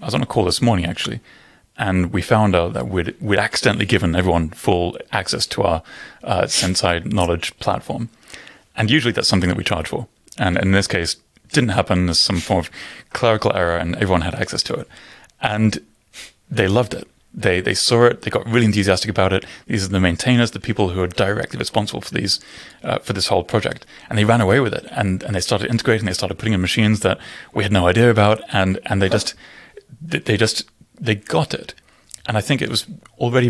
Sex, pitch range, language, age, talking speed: male, 90-115 Hz, German, 30-49, 215 wpm